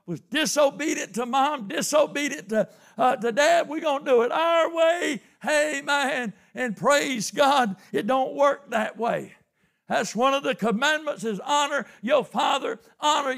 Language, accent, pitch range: English, American, 225-300 Hz